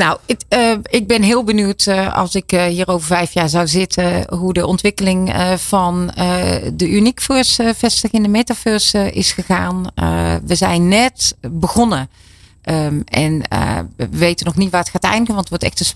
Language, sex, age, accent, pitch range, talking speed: Dutch, female, 40-59, Dutch, 160-195 Hz, 190 wpm